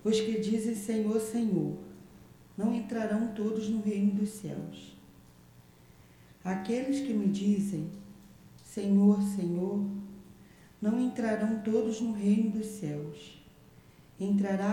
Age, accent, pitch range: 40-59, Brazilian, 190-220 Hz